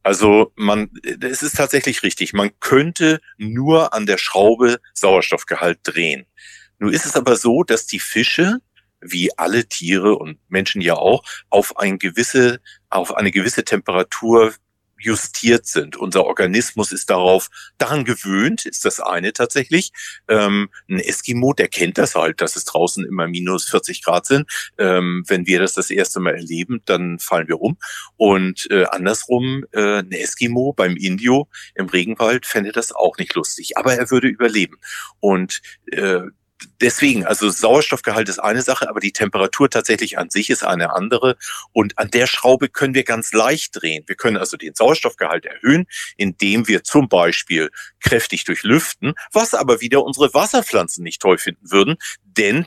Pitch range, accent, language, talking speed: 100-140 Hz, German, German, 160 wpm